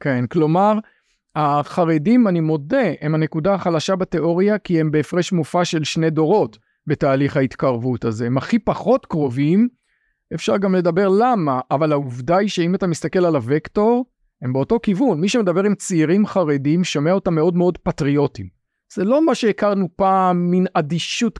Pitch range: 150-200 Hz